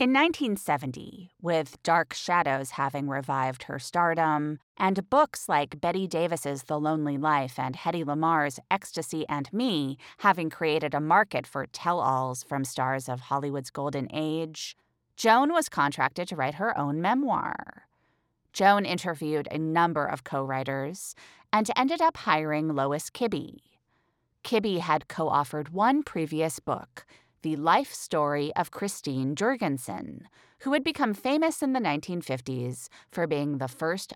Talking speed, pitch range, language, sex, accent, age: 140 wpm, 140-200 Hz, English, female, American, 30-49